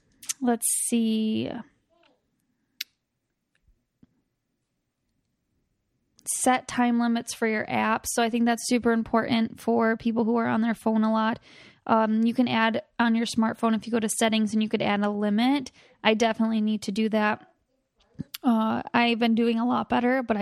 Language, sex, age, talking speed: English, female, 10-29, 160 wpm